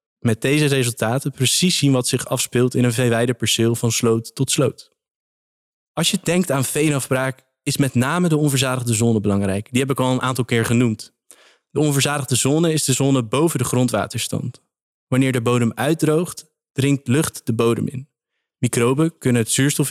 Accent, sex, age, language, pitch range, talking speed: Dutch, male, 20-39, Dutch, 120-145 Hz, 175 wpm